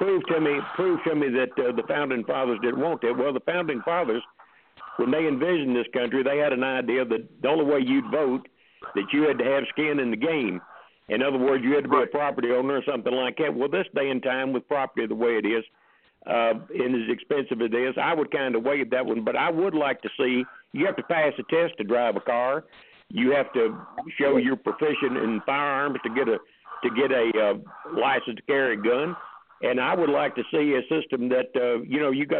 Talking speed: 240 wpm